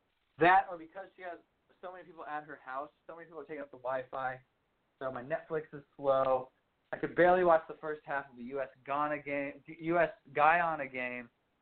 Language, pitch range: English, 140-175 Hz